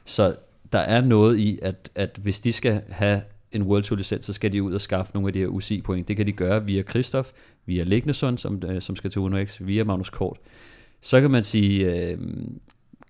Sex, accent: male, native